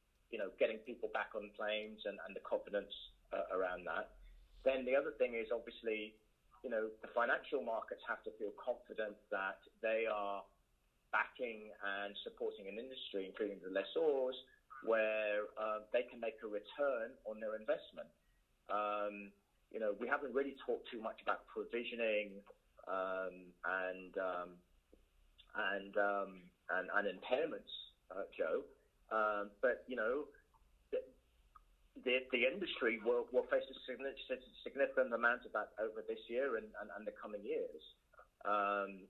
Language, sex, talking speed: English, male, 150 wpm